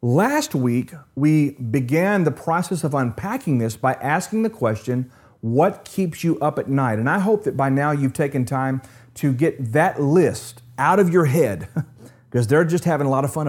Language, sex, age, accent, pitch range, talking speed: English, male, 40-59, American, 120-160 Hz, 195 wpm